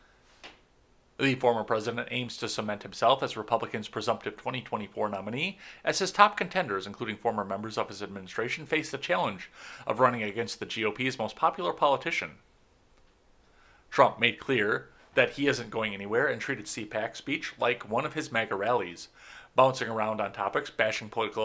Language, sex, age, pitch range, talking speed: English, male, 30-49, 110-145 Hz, 160 wpm